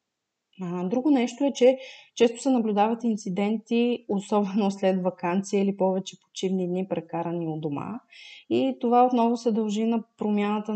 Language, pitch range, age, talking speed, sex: Bulgarian, 180-220 Hz, 30-49, 140 wpm, female